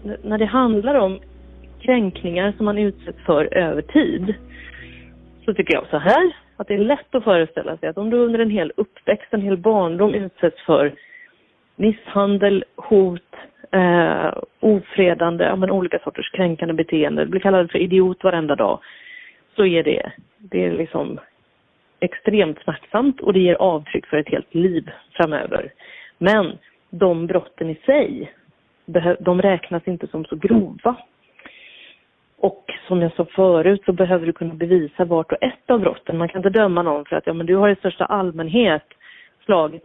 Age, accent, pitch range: 30-49, native, 170-210 Hz